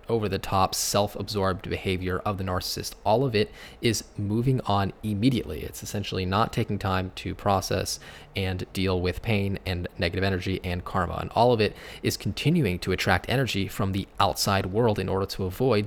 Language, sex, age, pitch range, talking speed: English, male, 20-39, 95-110 Hz, 175 wpm